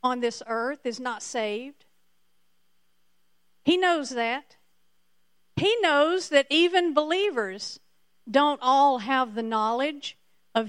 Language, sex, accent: English, female, American